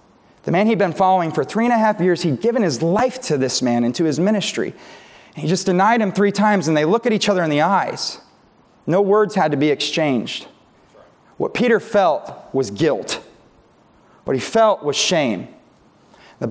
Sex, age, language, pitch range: male, 30-49, English, 155-215 Hz